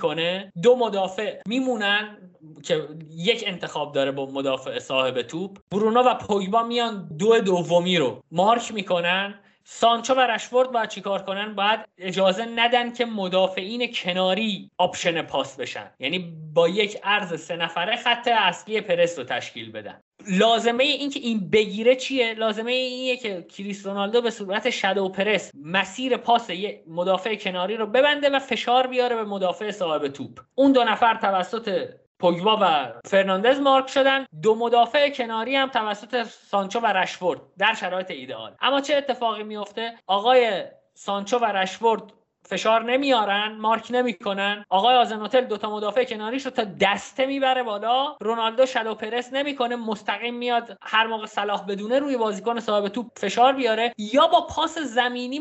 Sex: male